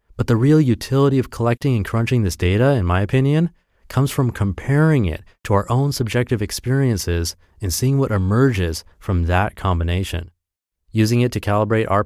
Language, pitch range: English, 90-120 Hz